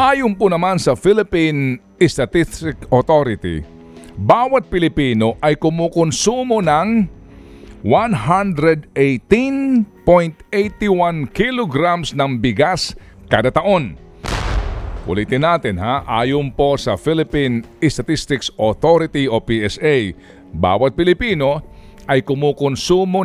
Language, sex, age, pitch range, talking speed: Filipino, male, 50-69, 125-185 Hz, 85 wpm